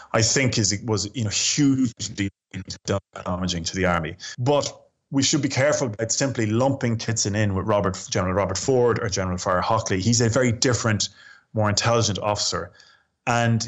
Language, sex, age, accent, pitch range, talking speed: English, male, 20-39, Irish, 95-115 Hz, 165 wpm